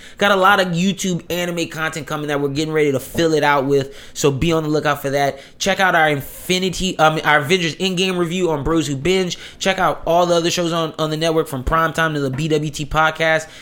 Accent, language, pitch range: American, English, 150-190 Hz